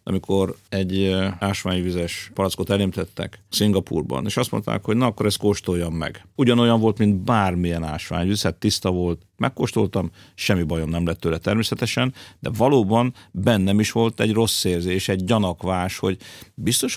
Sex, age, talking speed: male, 50-69, 145 wpm